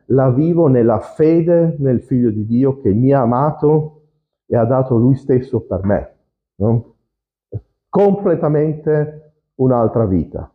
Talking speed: 130 wpm